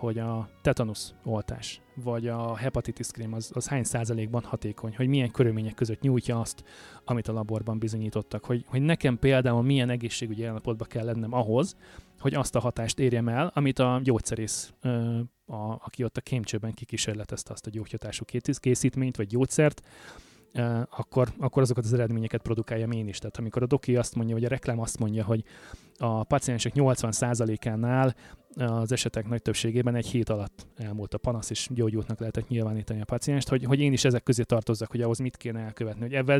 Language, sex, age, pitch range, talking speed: Hungarian, male, 20-39, 110-130 Hz, 175 wpm